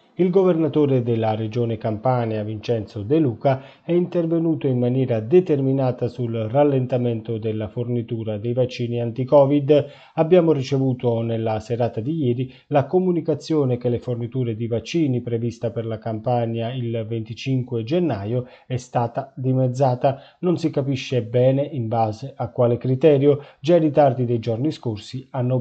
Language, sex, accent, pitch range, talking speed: Italian, male, native, 120-145 Hz, 140 wpm